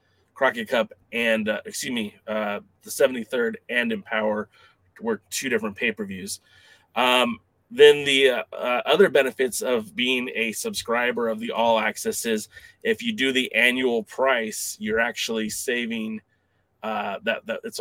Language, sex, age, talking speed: English, male, 20-39, 150 wpm